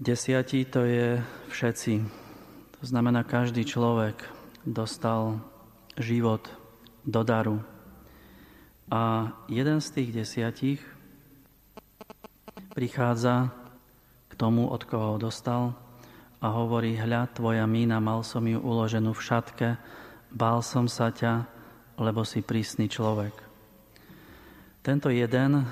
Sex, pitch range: male, 110-125 Hz